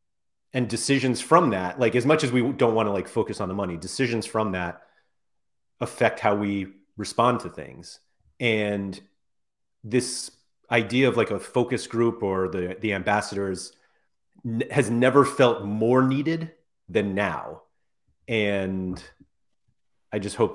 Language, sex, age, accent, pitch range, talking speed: English, male, 30-49, American, 95-115 Hz, 145 wpm